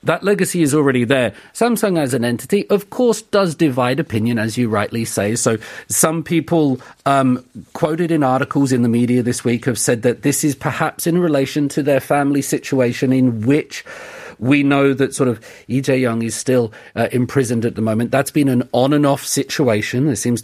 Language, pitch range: Korean, 115-145 Hz